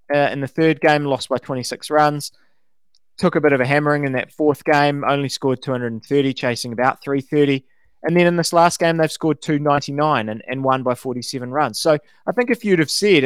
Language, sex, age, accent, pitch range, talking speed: English, male, 20-39, Australian, 125-155 Hz, 215 wpm